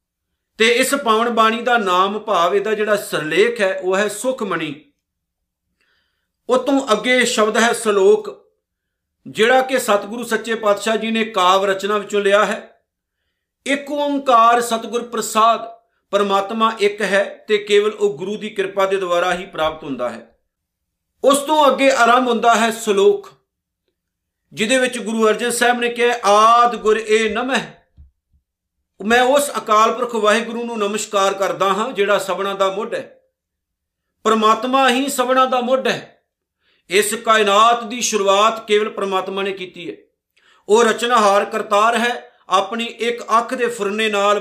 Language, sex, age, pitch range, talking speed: Punjabi, male, 50-69, 200-240 Hz, 140 wpm